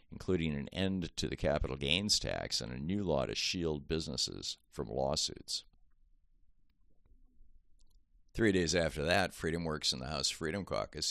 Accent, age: American, 50-69